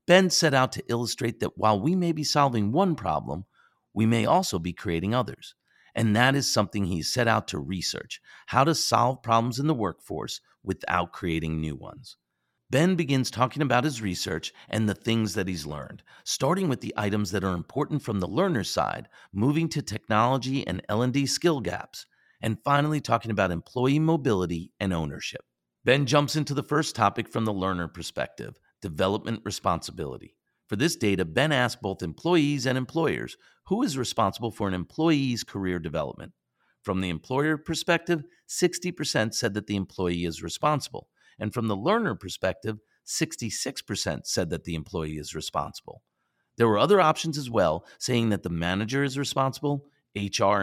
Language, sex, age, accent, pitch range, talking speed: English, male, 40-59, American, 95-140 Hz, 170 wpm